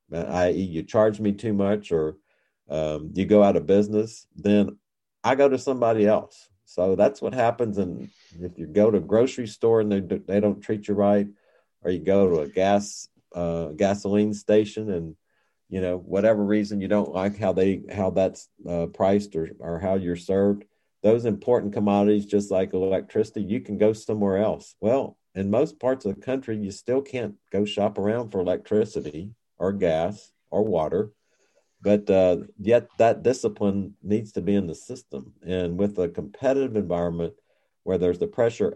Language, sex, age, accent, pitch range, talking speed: English, male, 50-69, American, 90-105 Hz, 180 wpm